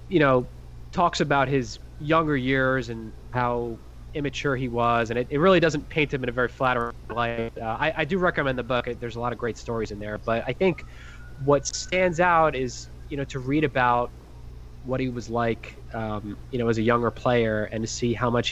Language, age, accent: English, 20-39, American